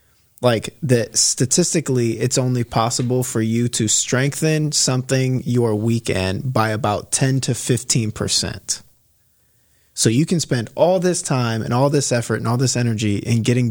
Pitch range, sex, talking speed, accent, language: 110-130 Hz, male, 160 wpm, American, English